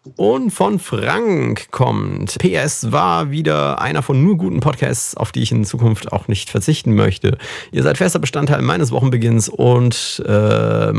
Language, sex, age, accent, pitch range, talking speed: German, male, 40-59, German, 105-135 Hz, 160 wpm